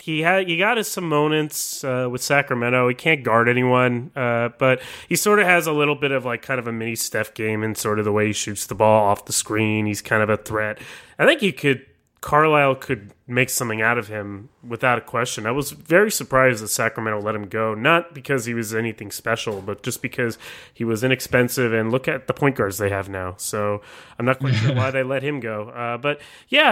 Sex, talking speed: male, 235 wpm